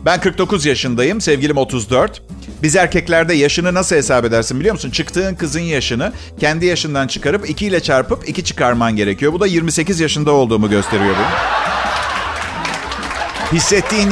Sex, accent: male, native